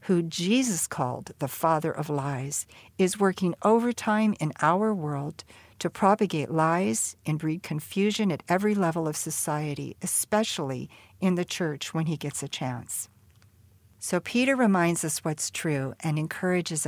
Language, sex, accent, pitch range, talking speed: English, female, American, 145-195 Hz, 145 wpm